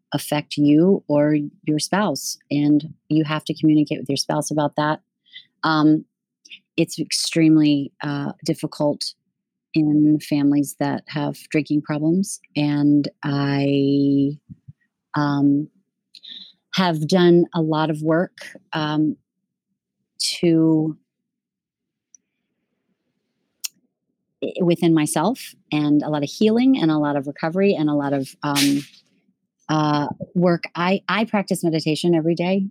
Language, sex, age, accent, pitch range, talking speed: English, female, 40-59, American, 150-180 Hz, 115 wpm